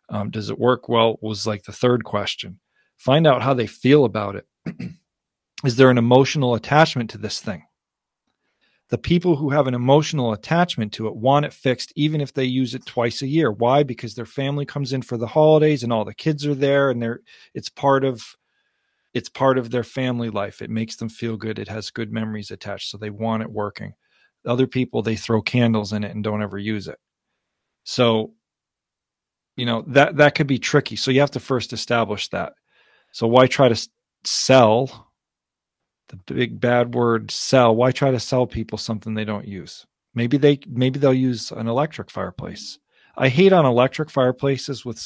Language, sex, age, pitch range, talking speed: English, male, 40-59, 110-135 Hz, 195 wpm